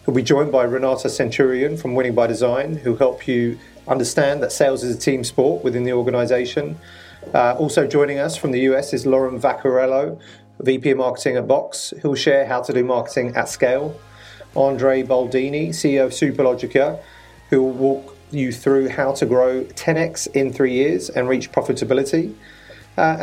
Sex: male